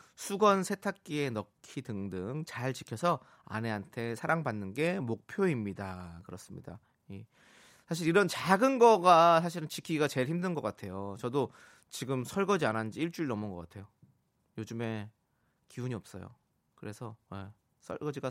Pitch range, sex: 110-170 Hz, male